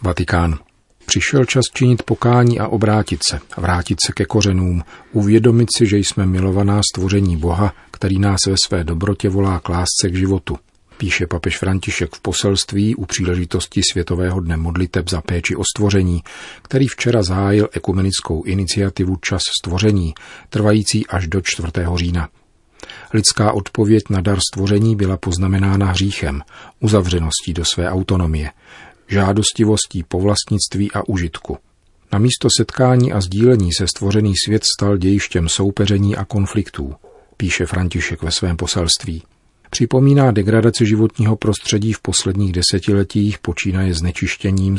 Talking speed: 130 wpm